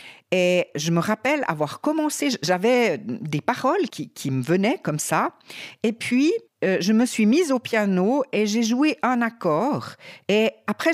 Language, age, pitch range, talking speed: French, 50-69, 160-245 Hz, 170 wpm